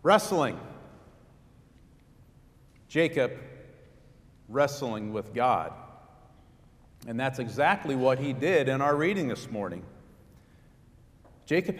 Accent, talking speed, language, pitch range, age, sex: American, 85 wpm, English, 115-160 Hz, 50-69, male